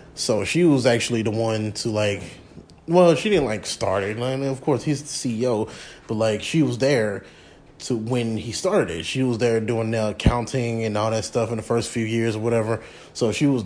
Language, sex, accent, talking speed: English, male, American, 210 wpm